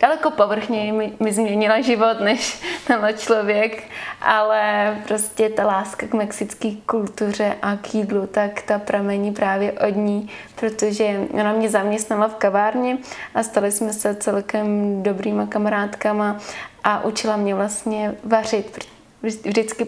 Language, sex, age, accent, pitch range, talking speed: Czech, female, 20-39, native, 205-225 Hz, 130 wpm